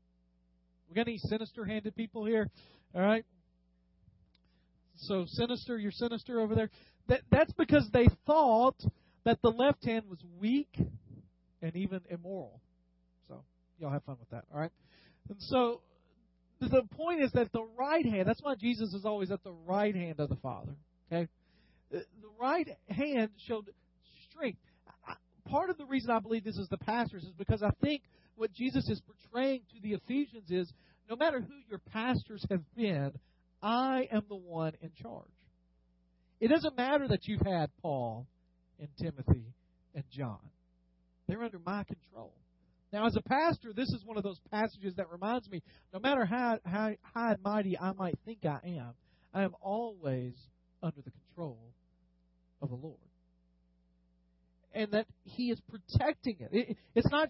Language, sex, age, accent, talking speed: English, male, 40-59, American, 160 wpm